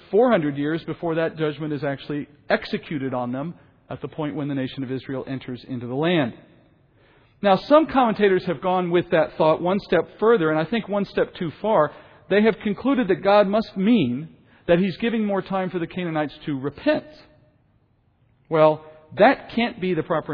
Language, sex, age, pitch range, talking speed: English, male, 40-59, 145-200 Hz, 185 wpm